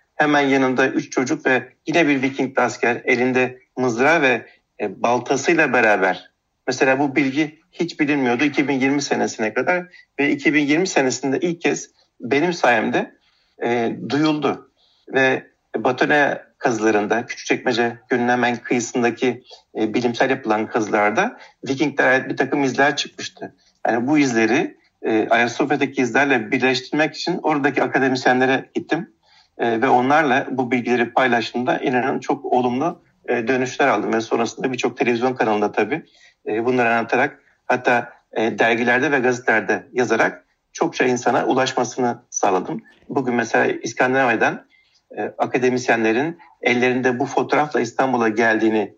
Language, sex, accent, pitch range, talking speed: Turkish, male, native, 120-140 Hz, 115 wpm